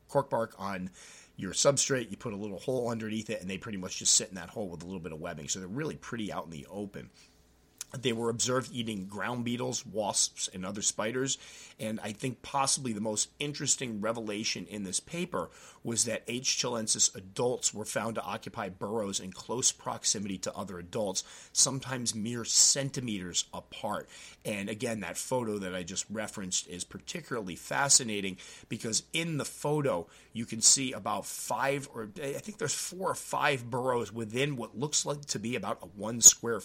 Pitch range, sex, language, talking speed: 100-135 Hz, male, English, 185 wpm